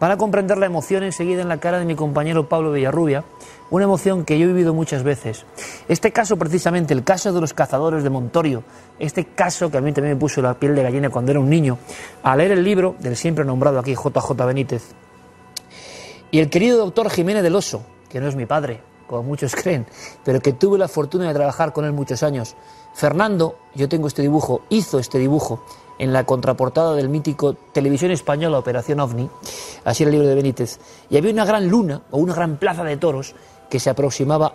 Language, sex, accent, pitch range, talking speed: Spanish, male, Spanish, 135-175 Hz, 210 wpm